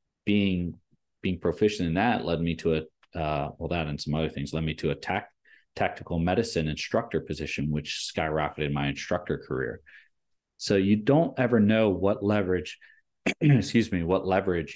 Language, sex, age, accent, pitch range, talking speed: English, male, 30-49, American, 80-95 Hz, 165 wpm